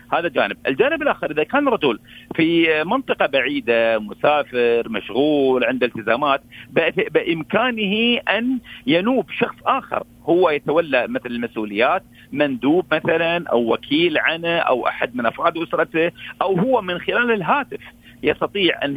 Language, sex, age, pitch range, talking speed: Arabic, male, 50-69, 135-210 Hz, 125 wpm